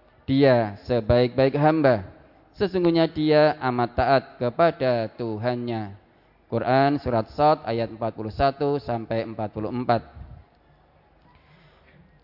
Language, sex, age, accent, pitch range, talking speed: Indonesian, male, 20-39, native, 120-145 Hz, 80 wpm